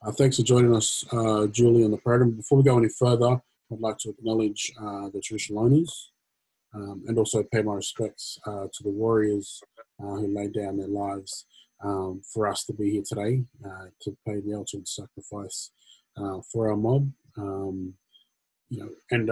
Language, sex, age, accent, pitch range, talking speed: English, male, 20-39, Australian, 100-110 Hz, 185 wpm